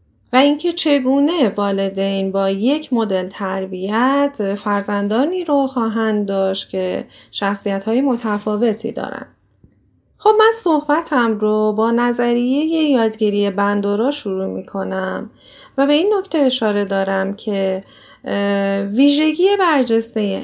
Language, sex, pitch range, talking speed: Persian, female, 200-275 Hz, 110 wpm